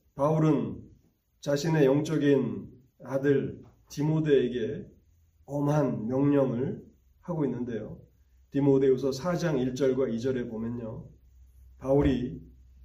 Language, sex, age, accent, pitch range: Korean, male, 30-49, native, 115-145 Hz